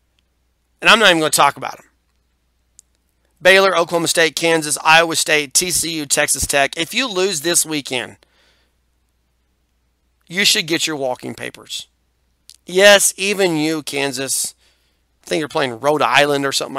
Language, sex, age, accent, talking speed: English, male, 40-59, American, 145 wpm